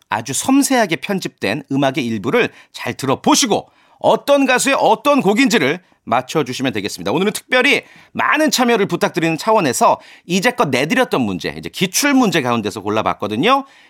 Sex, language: male, Korean